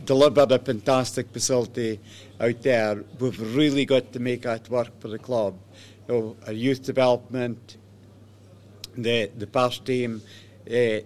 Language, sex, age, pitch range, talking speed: English, male, 60-79, 110-130 Hz, 145 wpm